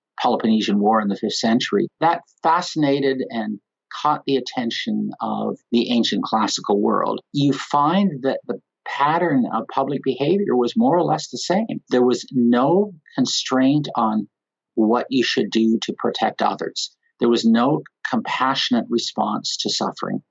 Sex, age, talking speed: male, 50-69, 150 wpm